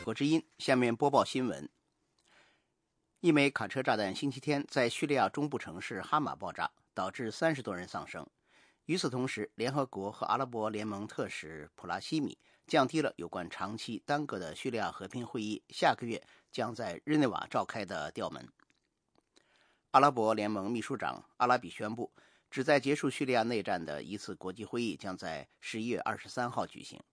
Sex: male